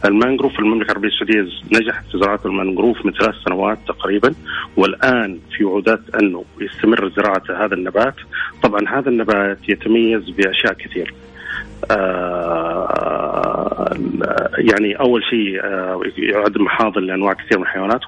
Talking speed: 120 wpm